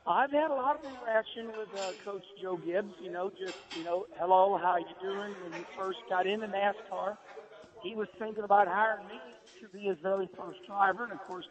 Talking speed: 215 wpm